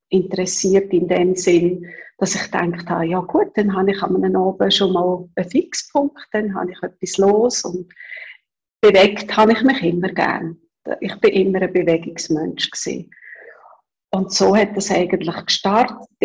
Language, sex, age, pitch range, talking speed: German, female, 40-59, 185-220 Hz, 150 wpm